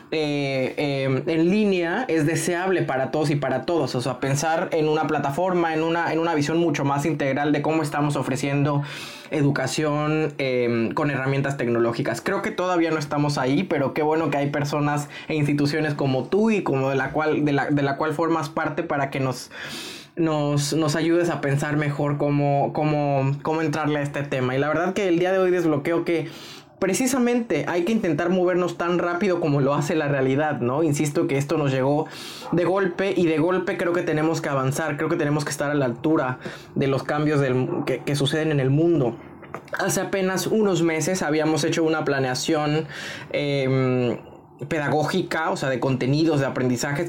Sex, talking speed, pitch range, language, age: male, 190 wpm, 140-165 Hz, Spanish, 20-39